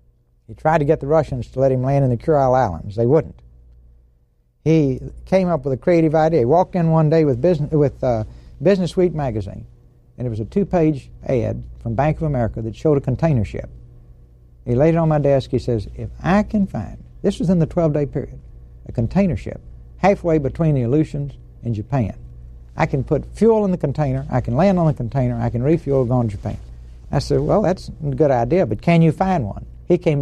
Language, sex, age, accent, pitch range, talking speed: English, male, 60-79, American, 105-160 Hz, 220 wpm